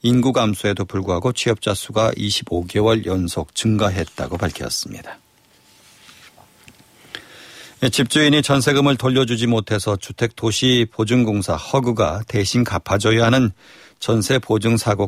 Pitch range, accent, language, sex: 100-125 Hz, native, Korean, male